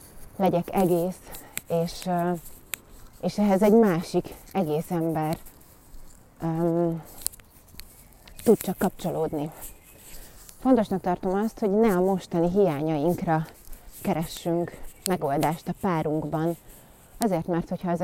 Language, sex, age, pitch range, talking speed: Hungarian, female, 30-49, 165-195 Hz, 95 wpm